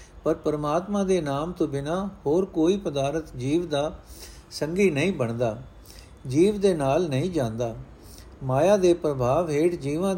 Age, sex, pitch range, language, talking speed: 60-79, male, 130-180 Hz, Punjabi, 140 wpm